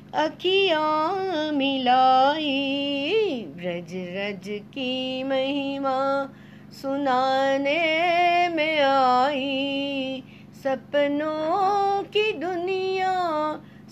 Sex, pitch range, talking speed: female, 260-360 Hz, 50 wpm